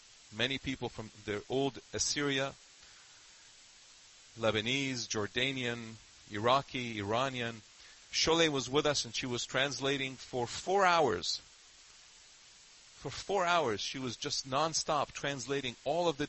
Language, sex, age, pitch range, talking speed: English, male, 40-59, 110-140 Hz, 120 wpm